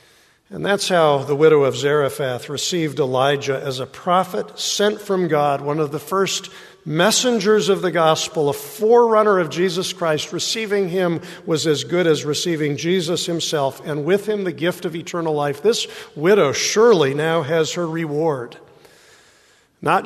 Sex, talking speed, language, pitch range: male, 160 wpm, English, 145-190 Hz